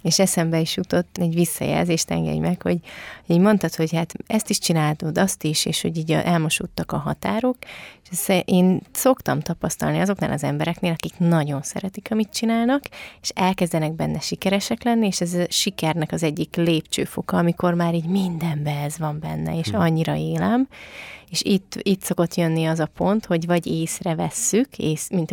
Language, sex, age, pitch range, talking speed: Hungarian, female, 30-49, 155-190 Hz, 175 wpm